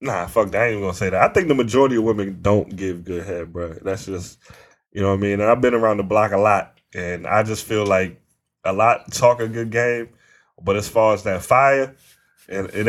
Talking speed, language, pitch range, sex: 250 wpm, English, 95-115 Hz, male